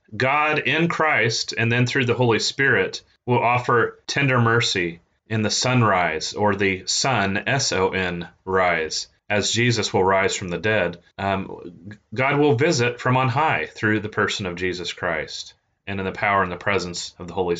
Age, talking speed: 30-49, 175 wpm